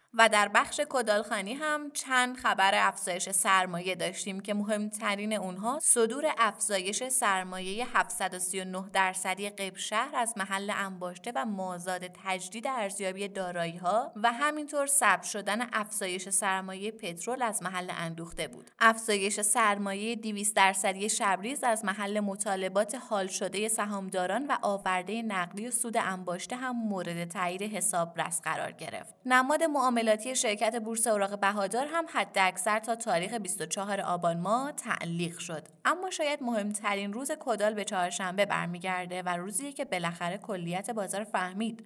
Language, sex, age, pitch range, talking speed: Persian, female, 20-39, 185-235 Hz, 140 wpm